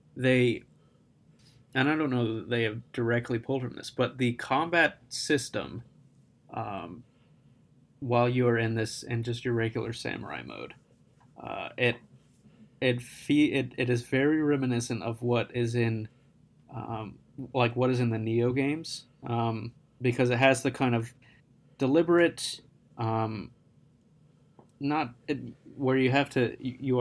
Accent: American